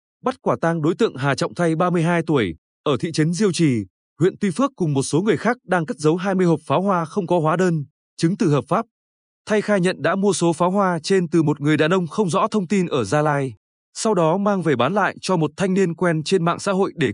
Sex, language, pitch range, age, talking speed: male, Vietnamese, 150-195 Hz, 20-39, 265 wpm